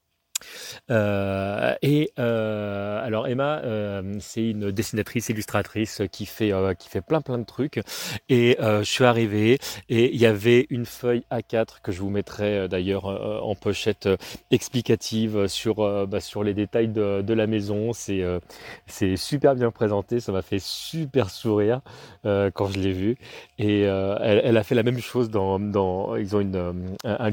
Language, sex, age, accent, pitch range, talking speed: French, male, 30-49, French, 100-120 Hz, 185 wpm